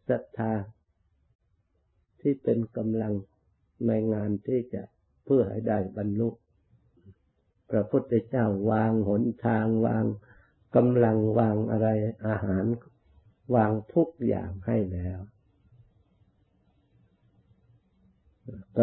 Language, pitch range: Thai, 95-115 Hz